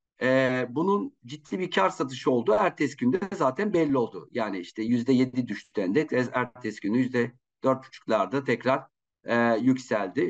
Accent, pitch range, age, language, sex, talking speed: native, 120-145 Hz, 50-69, Turkish, male, 135 wpm